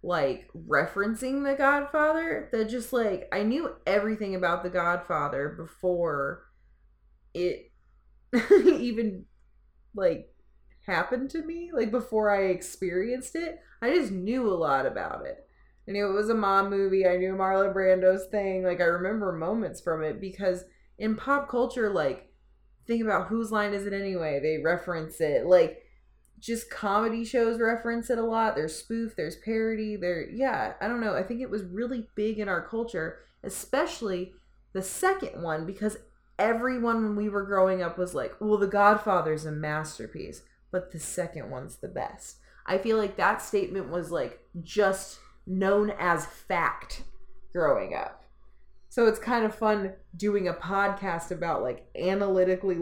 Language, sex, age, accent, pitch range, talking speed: English, female, 20-39, American, 175-230 Hz, 160 wpm